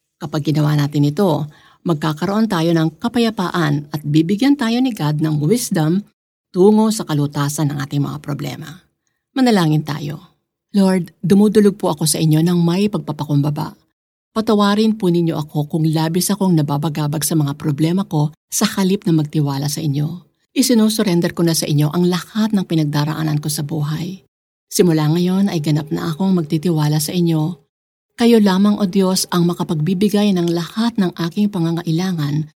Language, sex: Filipino, female